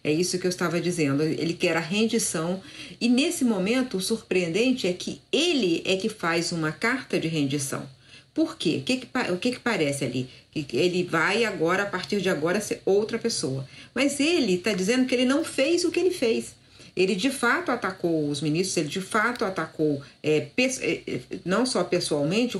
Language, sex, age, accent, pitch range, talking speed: Portuguese, female, 50-69, Brazilian, 155-225 Hz, 180 wpm